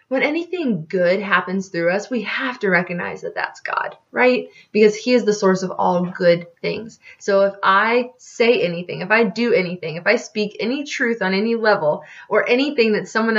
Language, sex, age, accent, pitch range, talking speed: English, female, 20-39, American, 185-225 Hz, 195 wpm